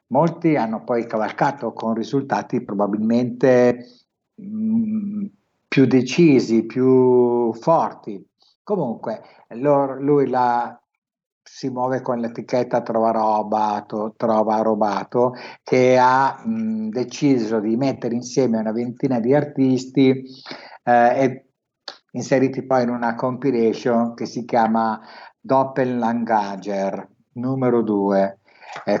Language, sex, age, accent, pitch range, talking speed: Italian, male, 60-79, native, 115-135 Hz, 105 wpm